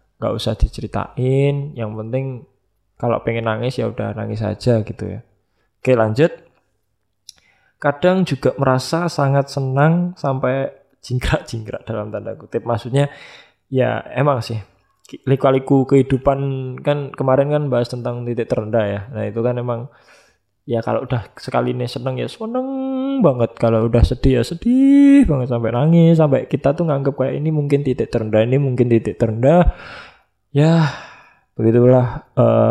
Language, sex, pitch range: Indonesian, male, 115-150 Hz